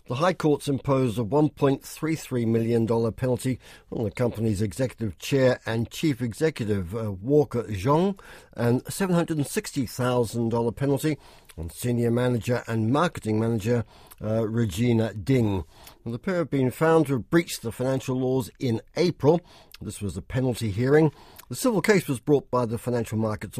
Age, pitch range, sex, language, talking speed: 60-79, 110-145 Hz, male, English, 155 wpm